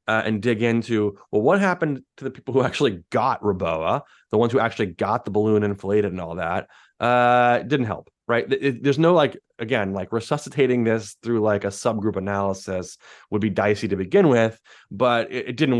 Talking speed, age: 200 wpm, 20-39